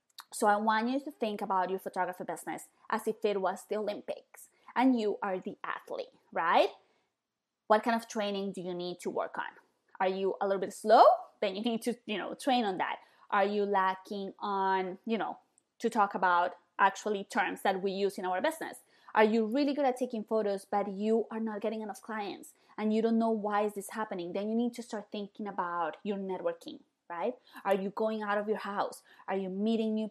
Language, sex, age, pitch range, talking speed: English, female, 20-39, 200-235 Hz, 215 wpm